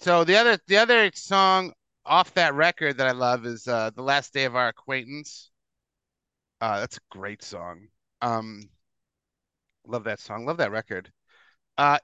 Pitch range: 120-170 Hz